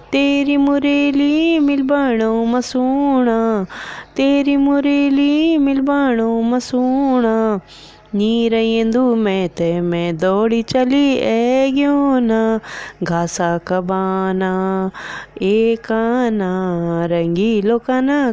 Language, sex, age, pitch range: Hindi, female, 20-39, 190-270 Hz